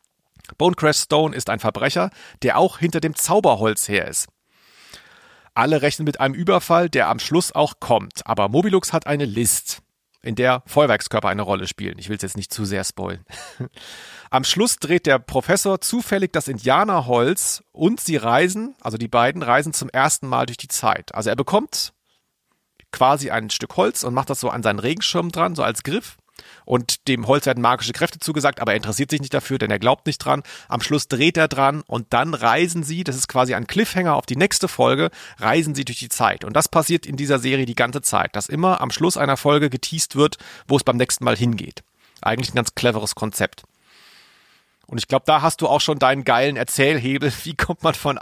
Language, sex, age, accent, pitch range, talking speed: German, male, 40-59, German, 120-155 Hz, 205 wpm